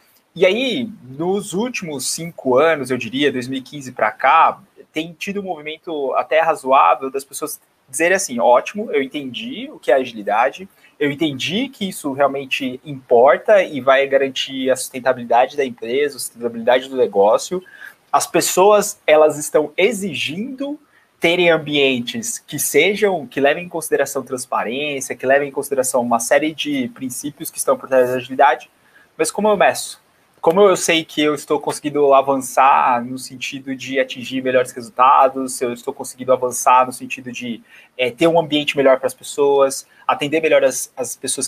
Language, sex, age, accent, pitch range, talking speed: Portuguese, male, 20-39, Brazilian, 130-180 Hz, 160 wpm